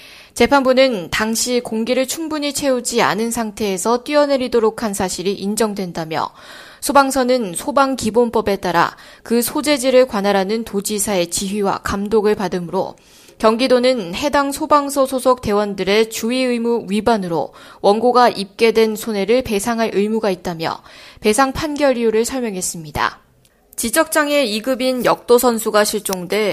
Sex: female